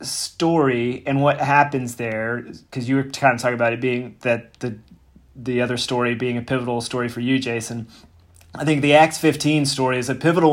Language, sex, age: English, male, 30-49